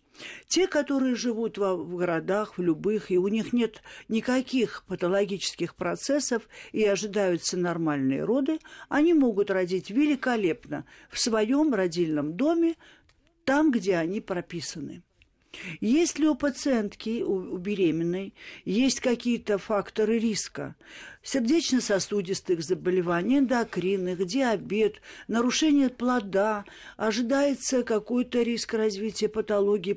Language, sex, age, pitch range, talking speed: Russian, female, 50-69, 190-250 Hz, 100 wpm